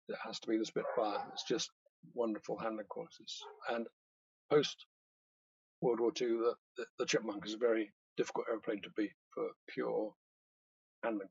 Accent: British